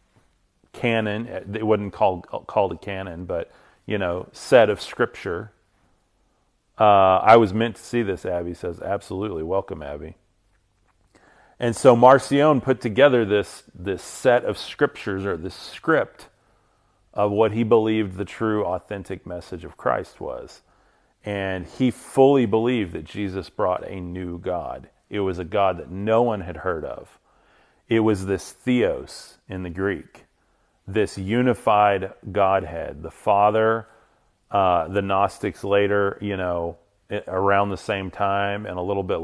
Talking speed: 145 wpm